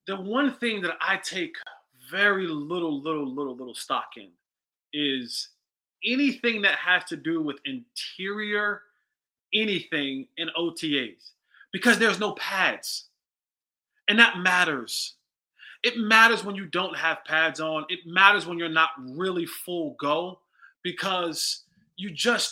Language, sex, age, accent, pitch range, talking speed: English, male, 20-39, American, 175-230 Hz, 135 wpm